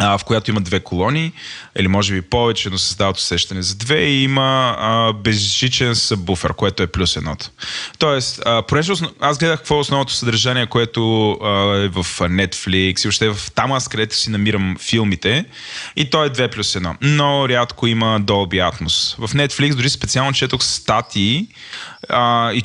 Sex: male